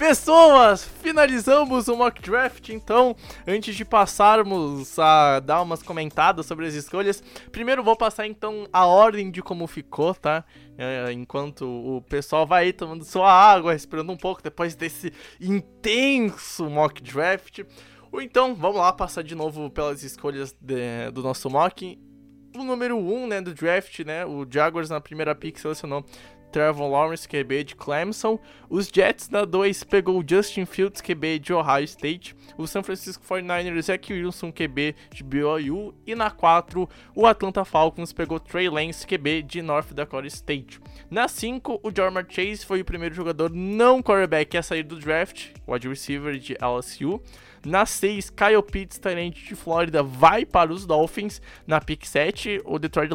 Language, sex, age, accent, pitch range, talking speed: Portuguese, male, 20-39, Brazilian, 155-200 Hz, 160 wpm